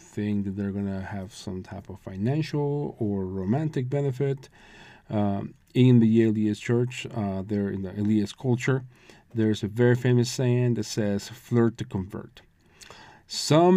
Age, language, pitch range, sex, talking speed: 40-59, English, 110-150 Hz, male, 150 wpm